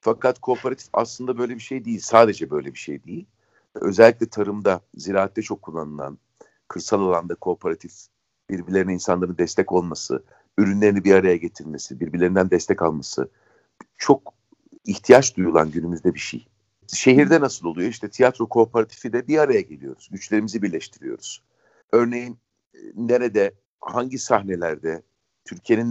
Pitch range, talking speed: 90-120 Hz, 125 wpm